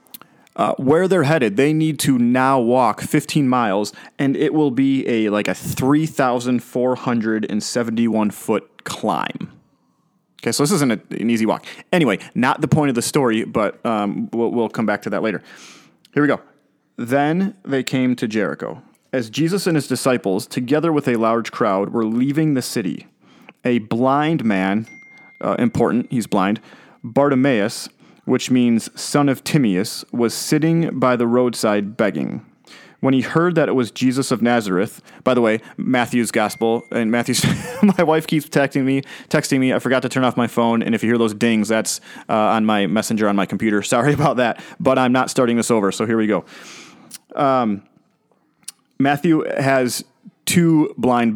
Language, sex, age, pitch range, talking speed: English, male, 30-49, 115-145 Hz, 170 wpm